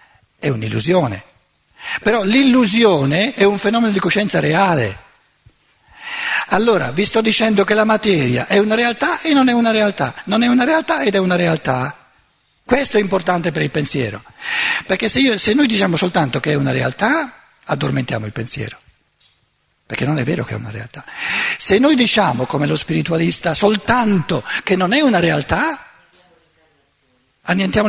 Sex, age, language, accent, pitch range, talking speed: male, 60-79, Italian, native, 140-225 Hz, 155 wpm